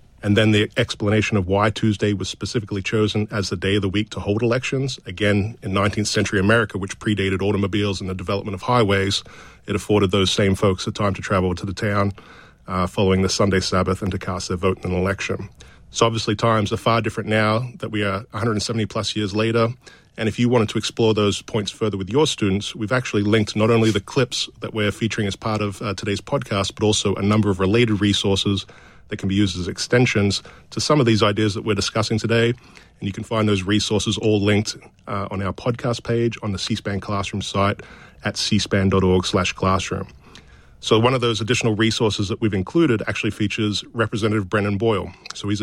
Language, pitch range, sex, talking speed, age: English, 100-115 Hz, male, 210 wpm, 40-59